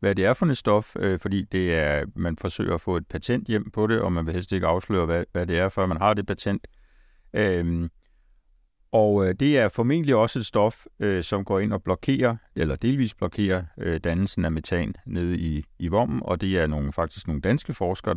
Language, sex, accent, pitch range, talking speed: Danish, male, native, 85-110 Hz, 220 wpm